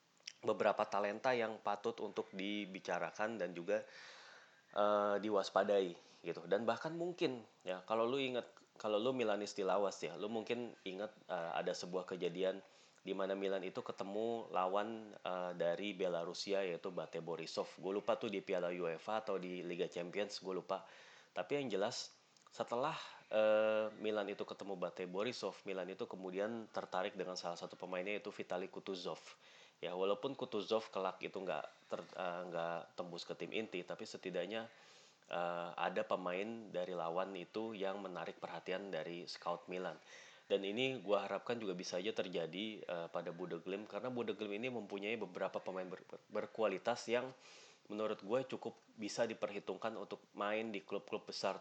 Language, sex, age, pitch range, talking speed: Indonesian, male, 30-49, 90-110 Hz, 155 wpm